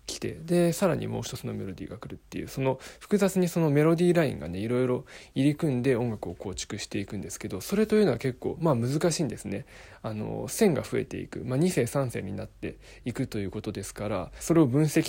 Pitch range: 110-160 Hz